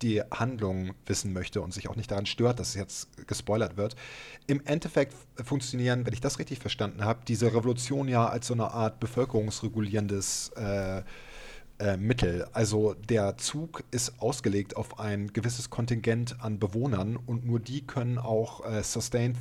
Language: German